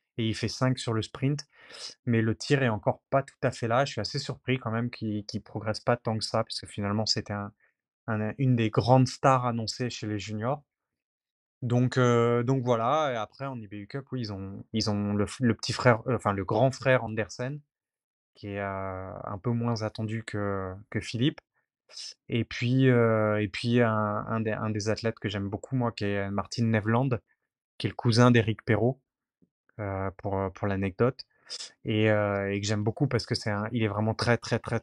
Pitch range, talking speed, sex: 105-125 Hz, 205 wpm, male